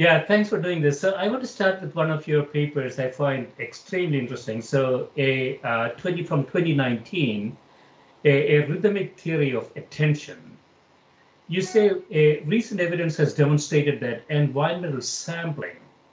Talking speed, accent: 140 wpm, Indian